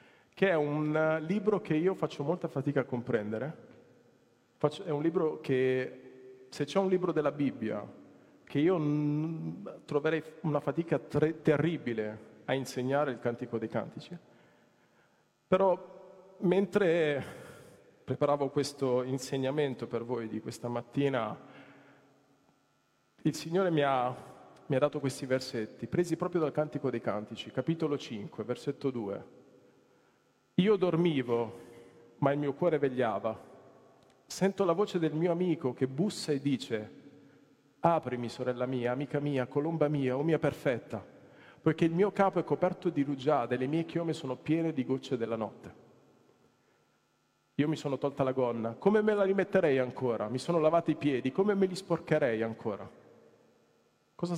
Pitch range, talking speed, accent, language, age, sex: 125-165 Hz, 140 wpm, native, Italian, 40-59, male